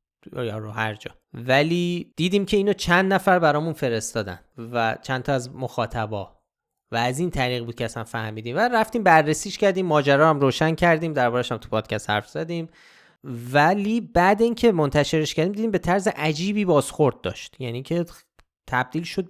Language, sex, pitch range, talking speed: Persian, male, 120-160 Hz, 160 wpm